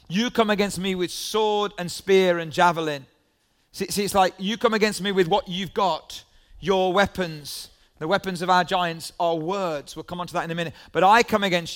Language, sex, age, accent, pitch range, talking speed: English, male, 40-59, British, 160-195 Hz, 220 wpm